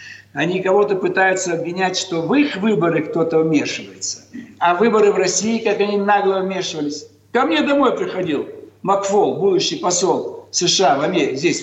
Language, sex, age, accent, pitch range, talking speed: Russian, male, 60-79, native, 165-240 Hz, 150 wpm